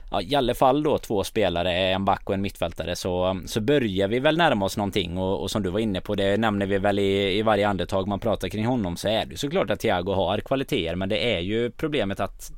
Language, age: Swedish, 20-39